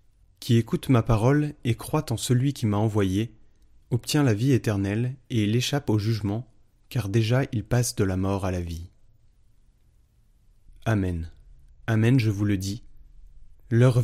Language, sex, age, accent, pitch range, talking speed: French, male, 30-49, French, 100-125 Hz, 155 wpm